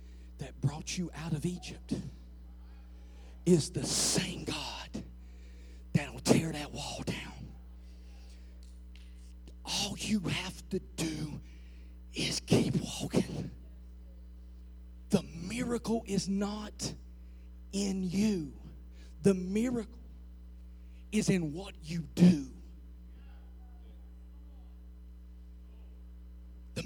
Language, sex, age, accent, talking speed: English, male, 40-59, American, 85 wpm